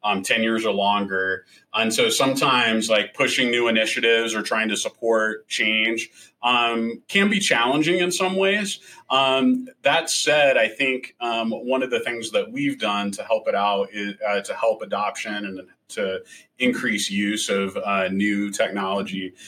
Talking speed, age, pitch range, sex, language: 165 wpm, 30-49, 110-145 Hz, male, English